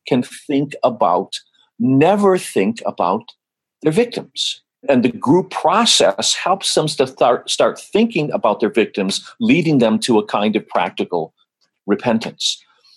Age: 50-69